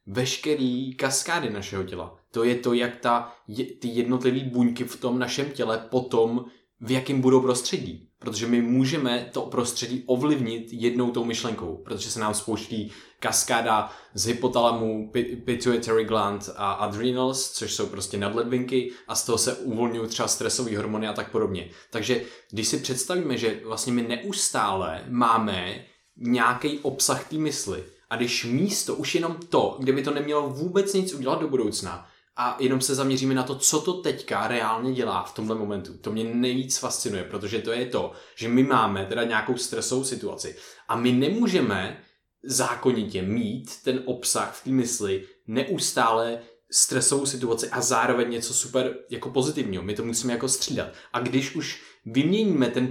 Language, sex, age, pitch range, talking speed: Czech, male, 20-39, 115-130 Hz, 160 wpm